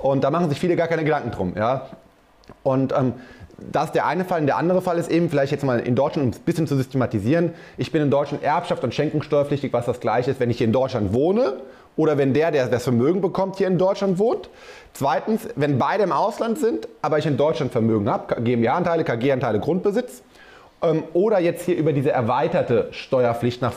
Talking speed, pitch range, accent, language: 215 wpm, 125-165 Hz, German, German